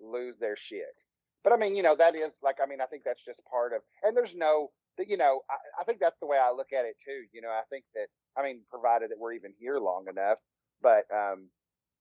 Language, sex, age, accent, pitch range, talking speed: English, male, 30-49, American, 115-165 Hz, 255 wpm